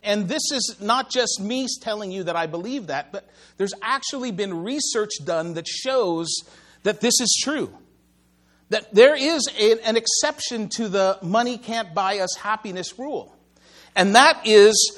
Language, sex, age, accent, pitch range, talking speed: English, male, 50-69, American, 175-245 Hz, 145 wpm